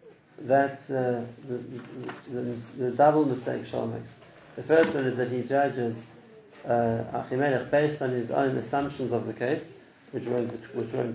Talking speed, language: 165 wpm, English